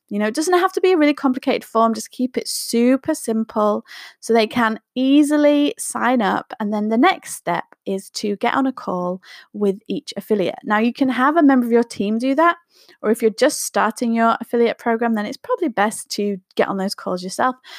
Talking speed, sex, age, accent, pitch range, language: 220 wpm, female, 20-39, British, 215-285 Hz, English